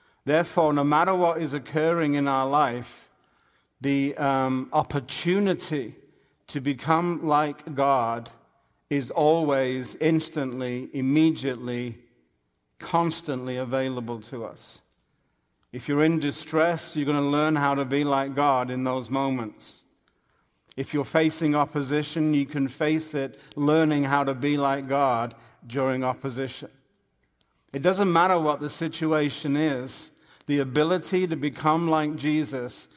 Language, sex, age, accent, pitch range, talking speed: English, male, 50-69, British, 130-155 Hz, 125 wpm